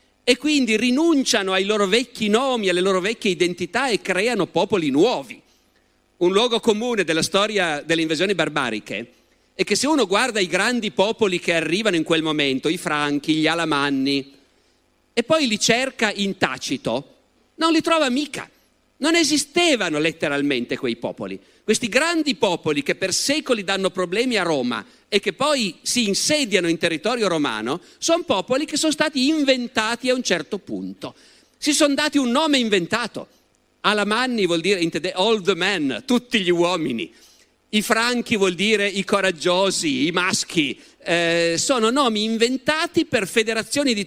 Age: 50-69